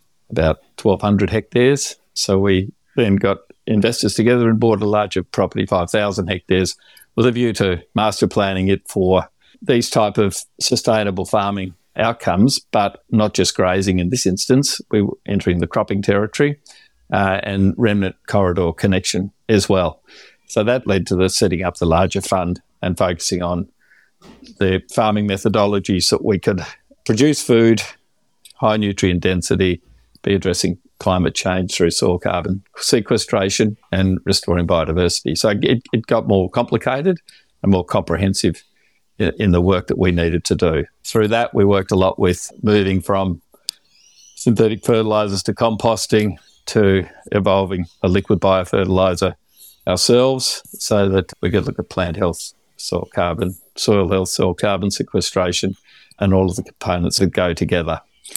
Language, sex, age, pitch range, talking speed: English, male, 50-69, 95-110 Hz, 150 wpm